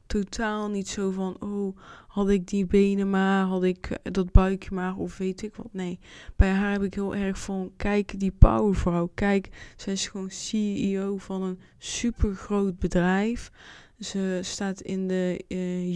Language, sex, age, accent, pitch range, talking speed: Dutch, female, 20-39, Dutch, 185-200 Hz, 170 wpm